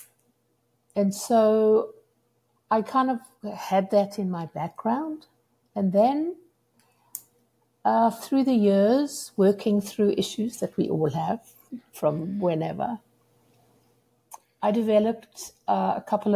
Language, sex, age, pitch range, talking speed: English, female, 60-79, 170-215 Hz, 110 wpm